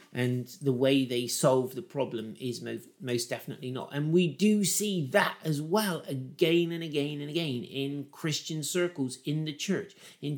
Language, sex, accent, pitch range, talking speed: English, male, British, 125-160 Hz, 180 wpm